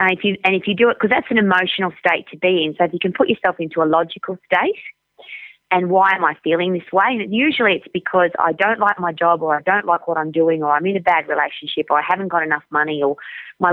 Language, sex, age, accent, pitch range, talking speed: English, female, 30-49, Australian, 160-210 Hz, 265 wpm